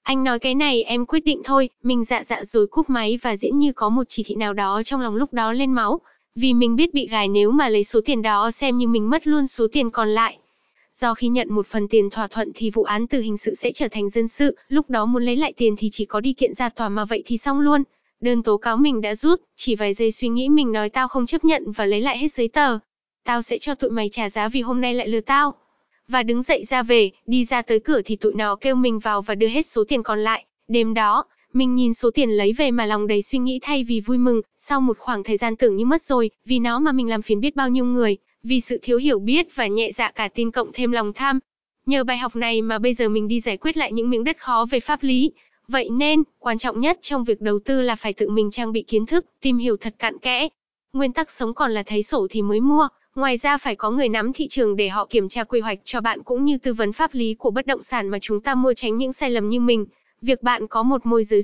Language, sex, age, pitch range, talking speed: Vietnamese, female, 10-29, 220-270 Hz, 280 wpm